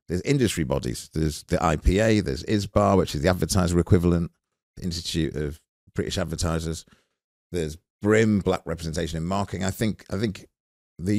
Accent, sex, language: British, male, English